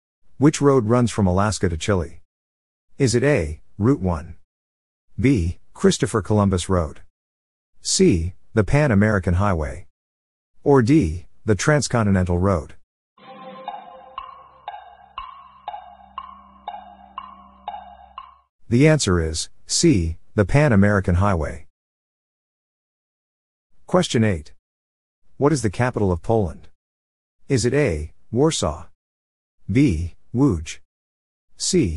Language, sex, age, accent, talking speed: English, male, 50-69, American, 90 wpm